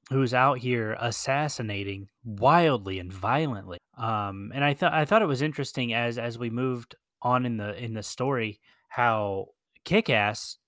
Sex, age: male, 10-29